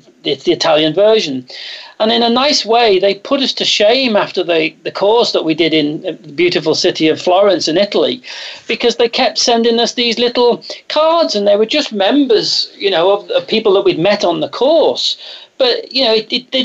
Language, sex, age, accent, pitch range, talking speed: English, male, 40-59, British, 205-285 Hz, 205 wpm